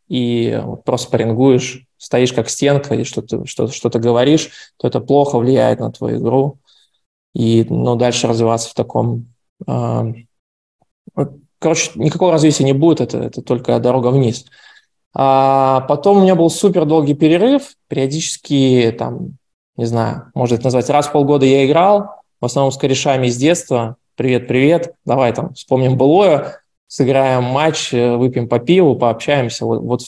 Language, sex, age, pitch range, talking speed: Russian, male, 20-39, 120-150 Hz, 150 wpm